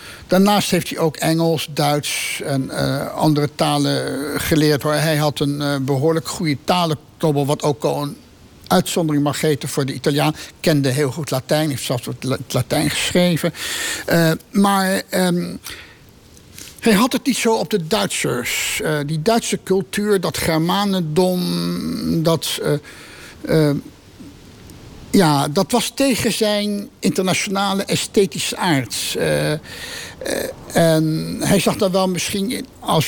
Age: 60-79